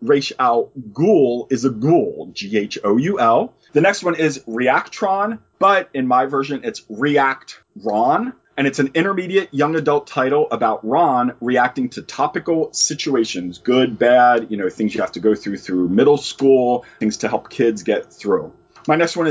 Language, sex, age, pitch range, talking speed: English, male, 30-49, 120-165 Hz, 175 wpm